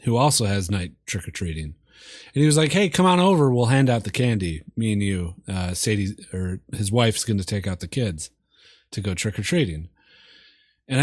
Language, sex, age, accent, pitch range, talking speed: English, male, 30-49, American, 100-130 Hz, 195 wpm